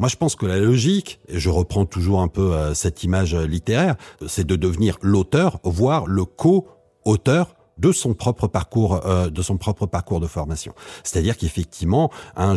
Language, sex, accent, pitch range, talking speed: French, male, French, 95-130 Hz, 175 wpm